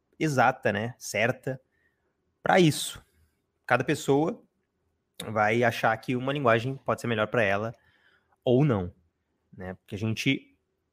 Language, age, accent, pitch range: Portuguese, 20-39, Brazilian, 105-135 Hz